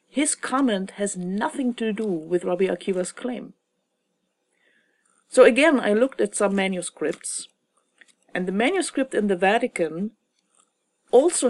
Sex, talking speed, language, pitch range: female, 125 wpm, English, 175-240 Hz